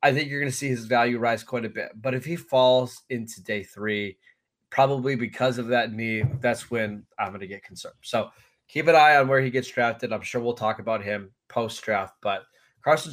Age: 20-39